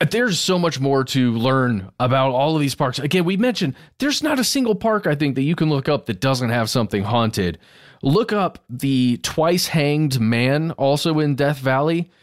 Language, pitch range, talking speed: English, 110-150 Hz, 195 wpm